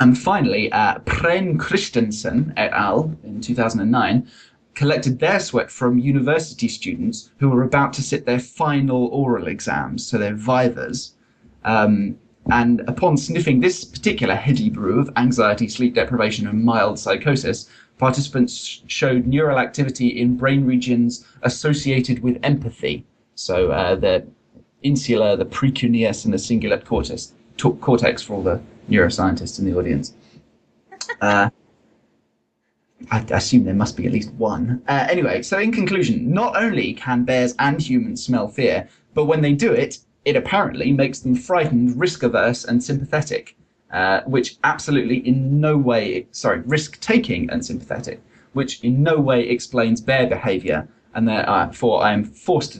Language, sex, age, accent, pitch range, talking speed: English, male, 20-39, British, 120-145 Hz, 145 wpm